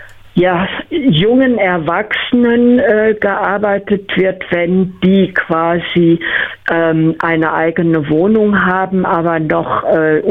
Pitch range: 165-195 Hz